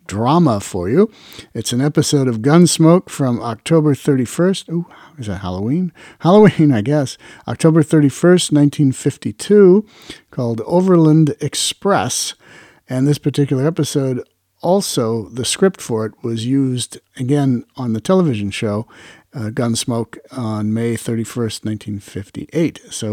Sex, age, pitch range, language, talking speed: male, 50-69, 110-155 Hz, English, 120 wpm